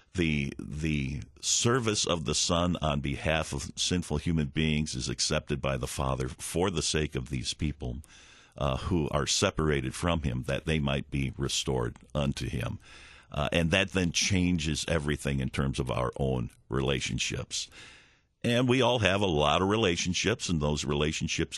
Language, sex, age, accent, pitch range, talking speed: English, male, 50-69, American, 70-90 Hz, 165 wpm